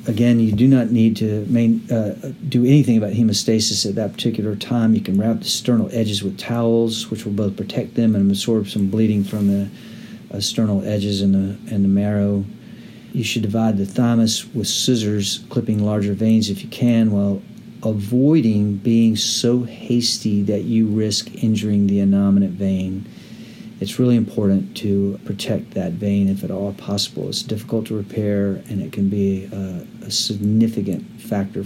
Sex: male